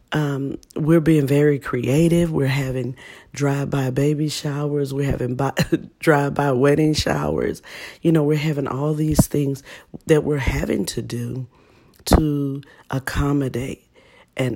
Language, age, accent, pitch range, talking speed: English, 40-59, American, 130-150 Hz, 135 wpm